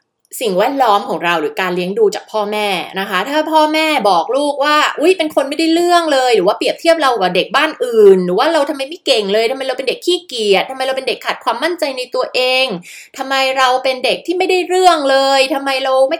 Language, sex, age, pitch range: Thai, female, 20-39, 195-325 Hz